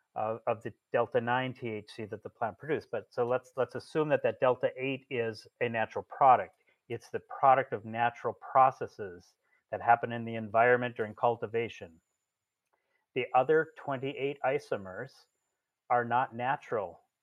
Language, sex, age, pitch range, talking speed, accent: English, male, 40-59, 115-140 Hz, 145 wpm, American